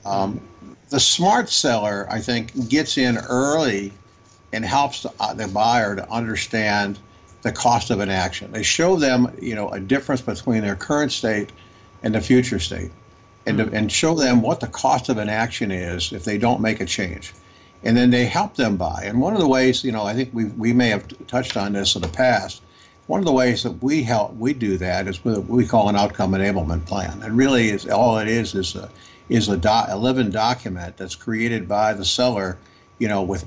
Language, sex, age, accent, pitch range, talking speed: English, male, 60-79, American, 100-120 Hz, 210 wpm